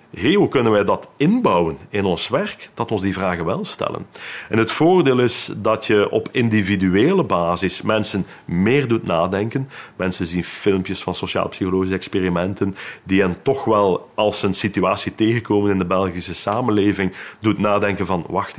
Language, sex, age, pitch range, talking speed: Dutch, male, 40-59, 95-130 Hz, 160 wpm